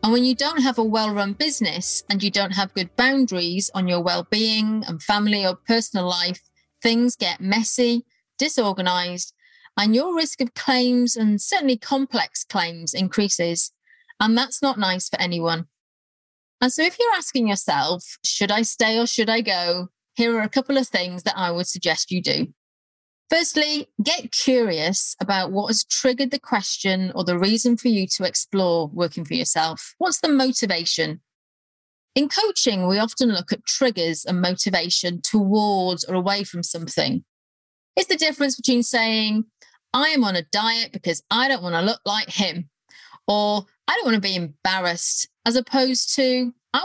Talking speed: 170 wpm